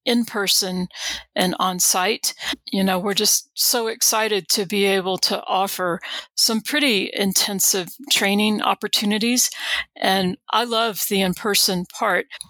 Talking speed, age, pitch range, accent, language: 135 wpm, 40-59, 195-230 Hz, American, English